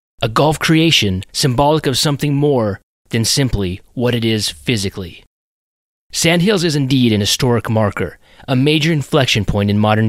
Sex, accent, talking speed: male, American, 150 wpm